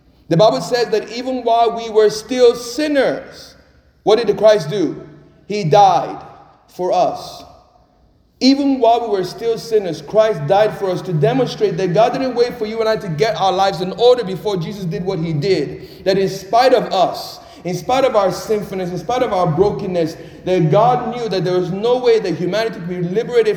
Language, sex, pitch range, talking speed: English, male, 165-210 Hz, 200 wpm